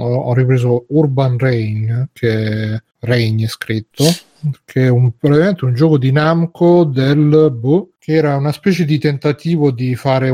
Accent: native